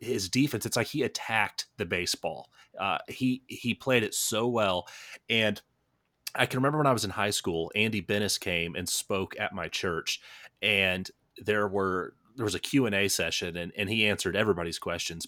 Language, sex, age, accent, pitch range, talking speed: English, male, 30-49, American, 95-115 Hz, 190 wpm